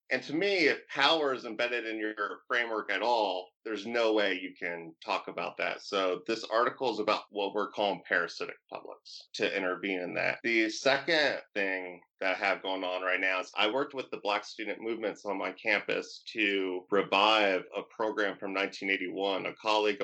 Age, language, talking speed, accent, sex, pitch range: 30-49, English, 190 wpm, American, male, 95-110 Hz